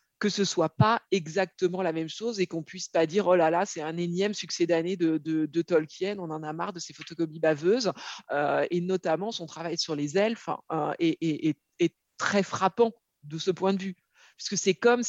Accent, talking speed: French, 225 wpm